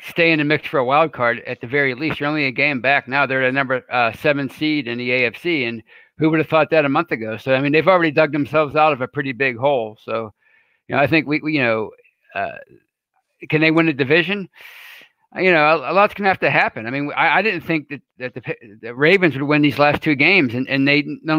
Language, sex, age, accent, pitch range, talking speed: English, male, 50-69, American, 130-155 Hz, 265 wpm